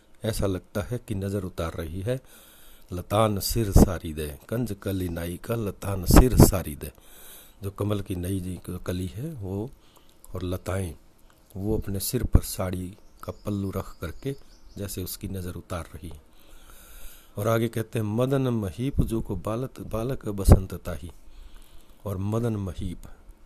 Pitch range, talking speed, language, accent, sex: 90-110 Hz, 150 wpm, Hindi, native, male